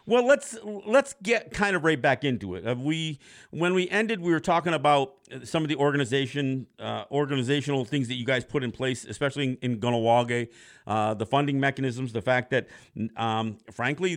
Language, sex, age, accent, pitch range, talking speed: English, male, 50-69, American, 115-150 Hz, 190 wpm